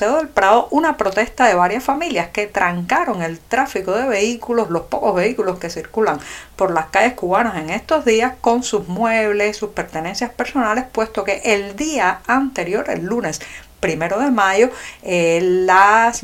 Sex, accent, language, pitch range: female, American, Spanish, 180-235 Hz